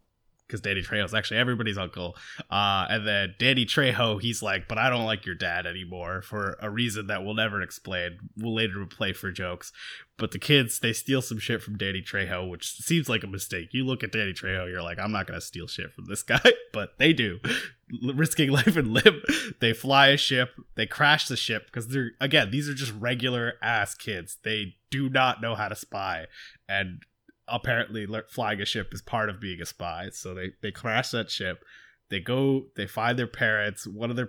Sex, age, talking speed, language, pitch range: male, 20-39, 210 wpm, English, 100-125 Hz